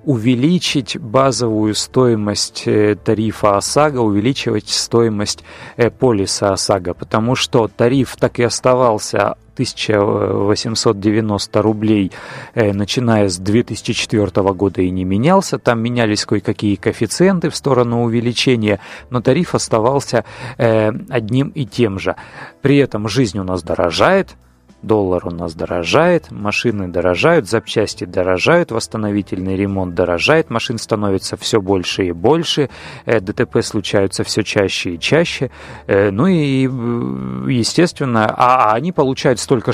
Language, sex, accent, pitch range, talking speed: Russian, male, native, 100-130 Hz, 110 wpm